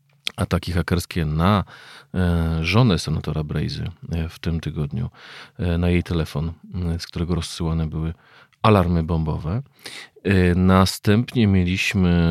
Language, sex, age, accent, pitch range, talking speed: Polish, male, 40-59, native, 80-95 Hz, 100 wpm